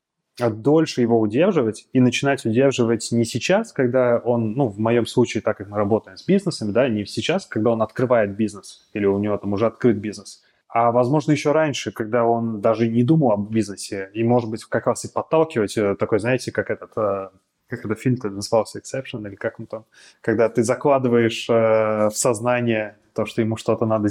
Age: 20-39